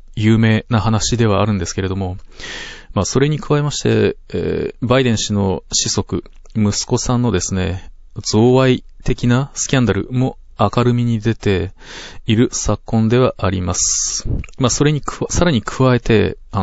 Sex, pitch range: male, 100-125 Hz